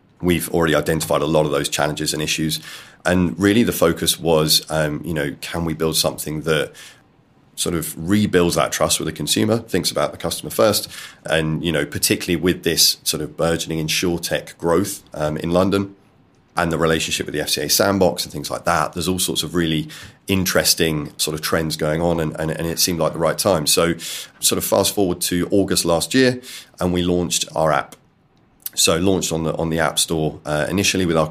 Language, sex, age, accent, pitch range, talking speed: English, male, 30-49, British, 75-90 Hz, 205 wpm